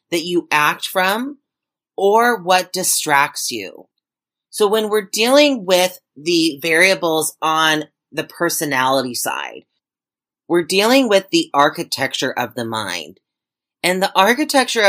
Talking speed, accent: 120 wpm, American